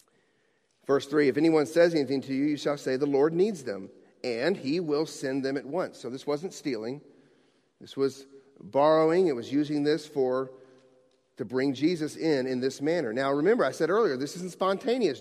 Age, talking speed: 40-59, 195 wpm